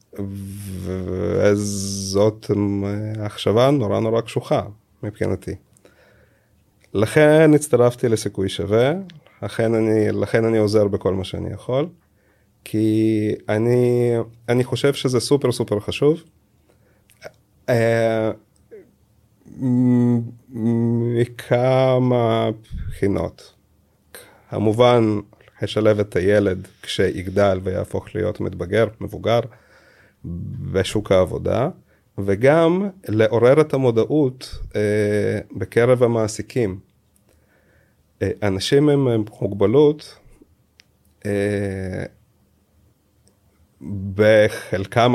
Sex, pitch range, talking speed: male, 100-120 Hz, 70 wpm